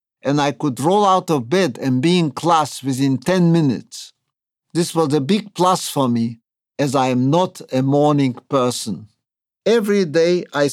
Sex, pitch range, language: male, 140-180 Hz, English